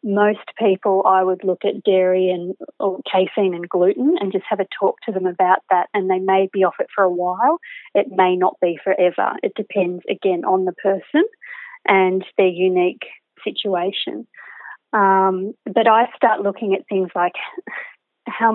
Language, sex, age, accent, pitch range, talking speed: English, female, 30-49, Australian, 190-215 Hz, 170 wpm